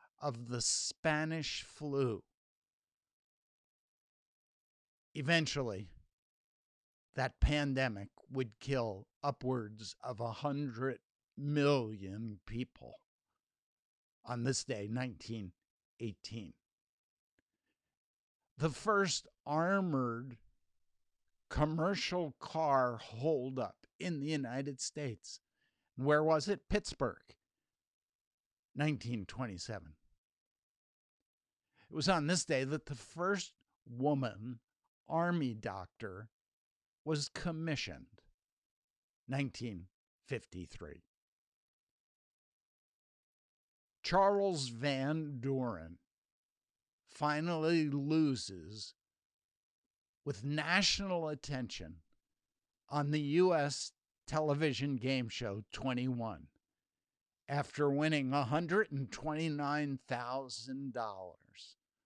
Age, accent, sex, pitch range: 60-79, American, male, 110-150 Hz